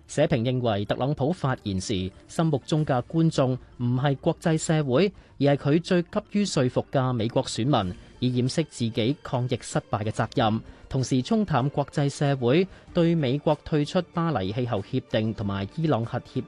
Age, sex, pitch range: 30-49, male, 115-155 Hz